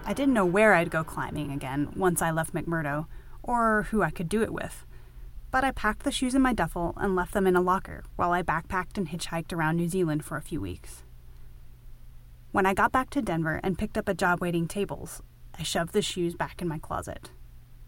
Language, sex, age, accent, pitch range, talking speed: English, female, 30-49, American, 145-205 Hz, 220 wpm